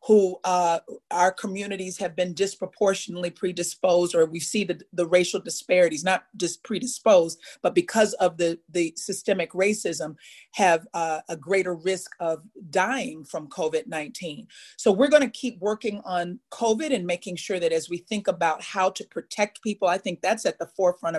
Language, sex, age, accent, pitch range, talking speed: English, female, 40-59, American, 165-195 Hz, 165 wpm